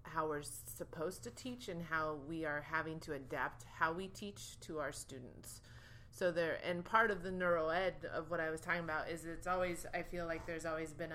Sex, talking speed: female, 220 wpm